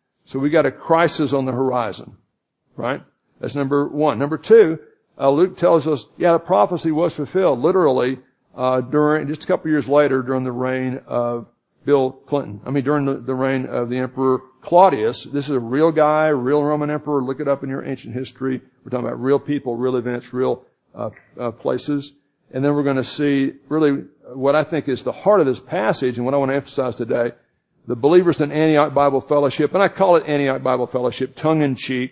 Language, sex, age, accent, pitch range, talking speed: English, male, 60-79, American, 125-150 Hz, 205 wpm